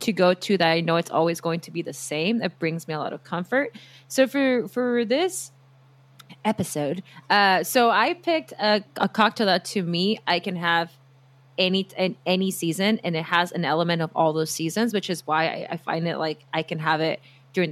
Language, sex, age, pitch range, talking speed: English, female, 20-39, 155-195 Hz, 215 wpm